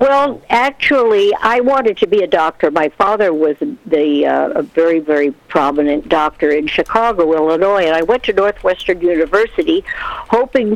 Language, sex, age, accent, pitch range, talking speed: English, female, 60-79, American, 175-260 Hz, 155 wpm